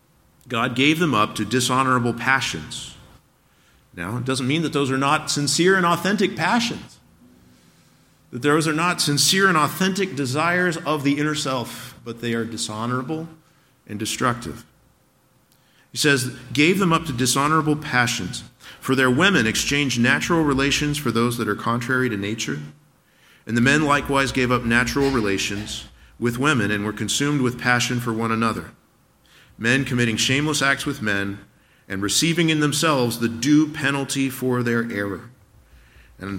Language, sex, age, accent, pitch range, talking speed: English, male, 50-69, American, 115-150 Hz, 155 wpm